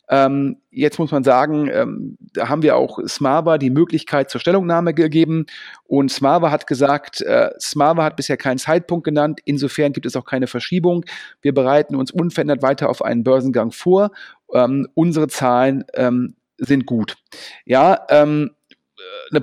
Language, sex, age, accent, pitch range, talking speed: German, male, 40-59, German, 140-165 Hz, 140 wpm